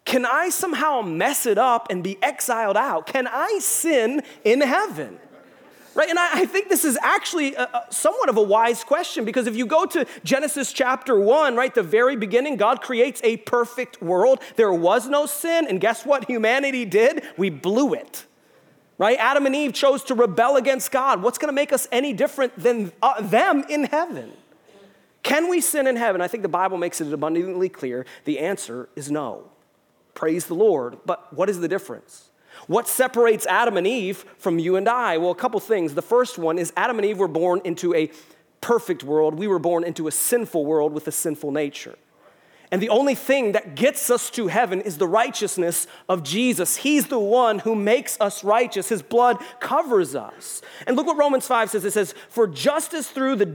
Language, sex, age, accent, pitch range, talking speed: English, male, 30-49, American, 185-275 Hz, 200 wpm